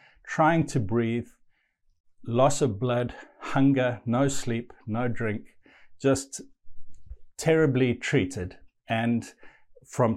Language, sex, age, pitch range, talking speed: English, male, 50-69, 105-135 Hz, 95 wpm